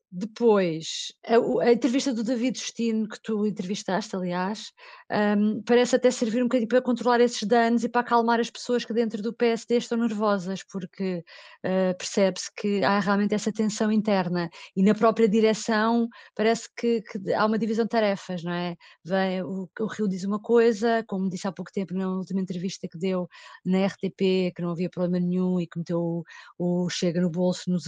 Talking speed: 190 wpm